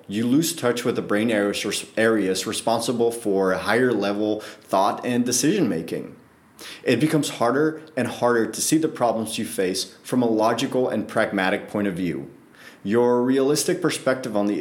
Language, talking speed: English, 150 wpm